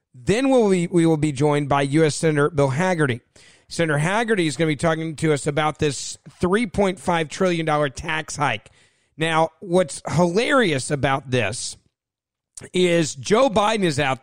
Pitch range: 140-180 Hz